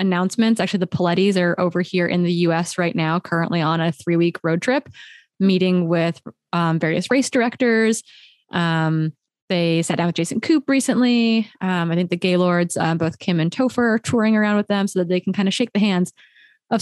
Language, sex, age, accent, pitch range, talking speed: English, female, 20-39, American, 170-205 Hz, 205 wpm